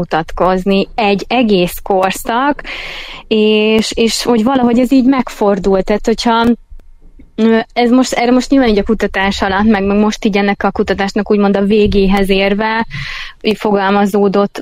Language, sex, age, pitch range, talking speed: Hungarian, female, 20-39, 195-230 Hz, 125 wpm